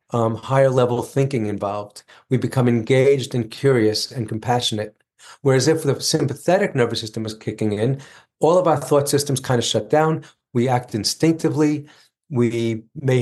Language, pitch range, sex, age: English, 115-145 Hz, male, 40-59